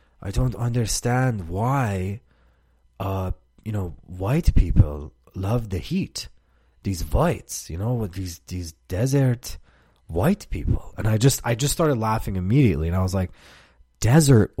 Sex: male